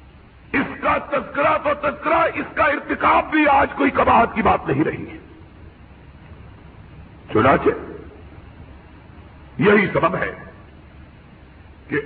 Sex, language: male, Urdu